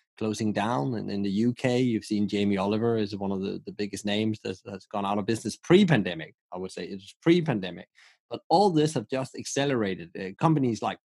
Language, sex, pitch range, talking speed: English, male, 105-135 Hz, 215 wpm